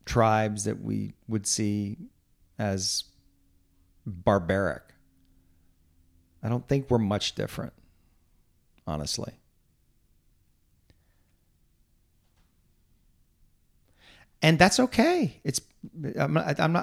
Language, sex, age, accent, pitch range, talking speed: English, male, 40-59, American, 85-120 Hz, 65 wpm